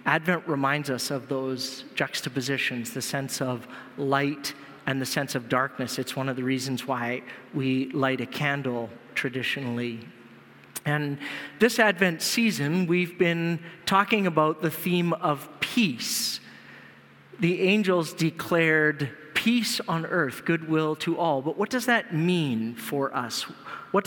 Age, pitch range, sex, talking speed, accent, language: 40-59, 140-180 Hz, male, 135 wpm, American, English